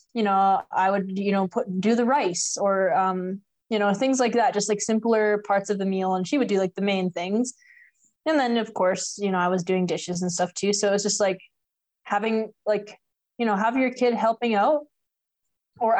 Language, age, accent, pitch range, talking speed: English, 20-39, American, 195-235 Hz, 225 wpm